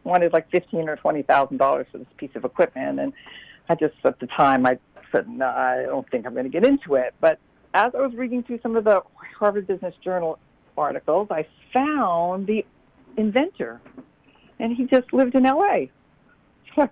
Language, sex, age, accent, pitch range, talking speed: English, female, 50-69, American, 165-235 Hz, 195 wpm